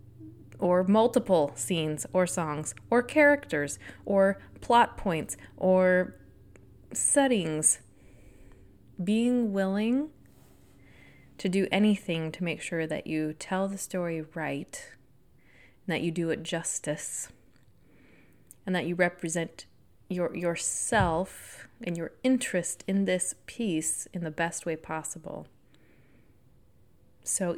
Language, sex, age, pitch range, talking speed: English, female, 20-39, 160-205 Hz, 110 wpm